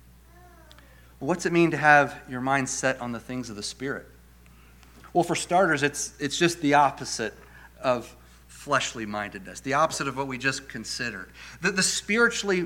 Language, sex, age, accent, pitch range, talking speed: English, male, 40-59, American, 125-175 Hz, 165 wpm